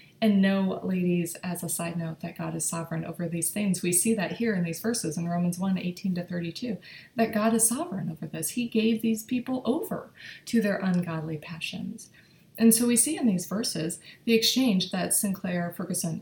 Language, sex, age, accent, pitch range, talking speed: English, female, 20-39, American, 170-210 Hz, 200 wpm